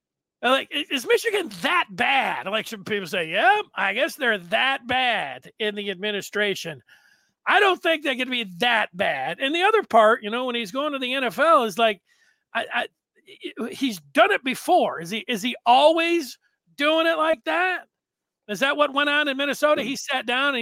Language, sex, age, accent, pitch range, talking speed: English, male, 40-59, American, 235-325 Hz, 195 wpm